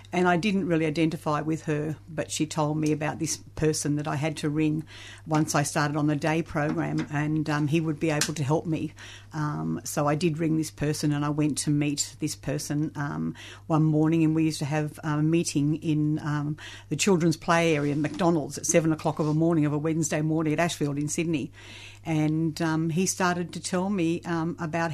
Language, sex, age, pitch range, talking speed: English, female, 50-69, 150-165 Hz, 215 wpm